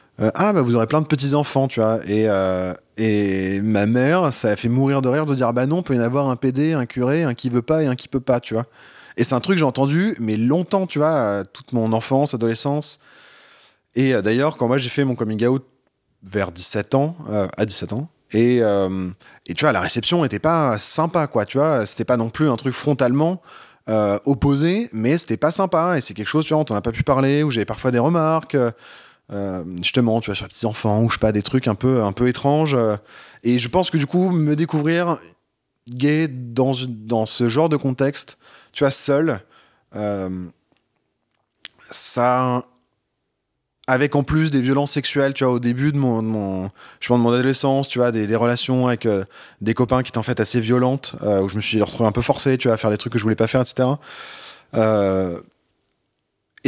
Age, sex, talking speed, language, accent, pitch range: 20-39, male, 230 wpm, French, French, 110-145 Hz